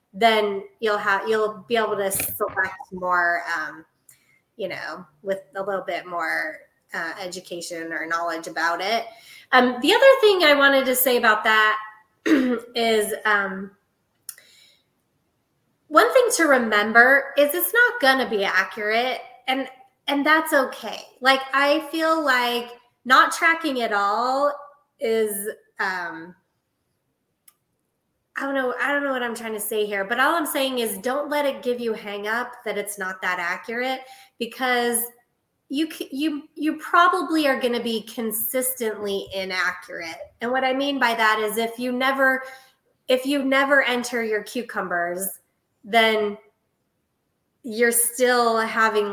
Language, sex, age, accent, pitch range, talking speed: English, female, 20-39, American, 205-265 Hz, 145 wpm